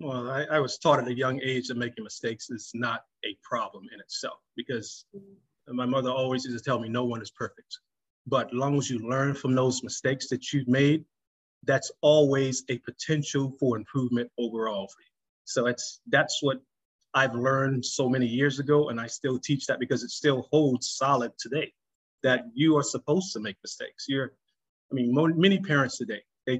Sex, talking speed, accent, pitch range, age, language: male, 195 wpm, American, 120-145 Hz, 30-49, English